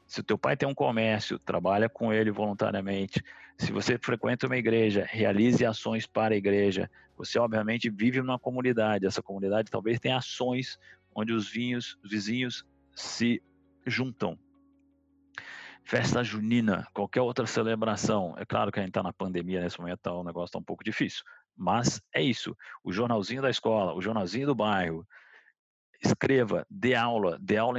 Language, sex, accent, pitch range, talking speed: Portuguese, male, Brazilian, 105-130 Hz, 160 wpm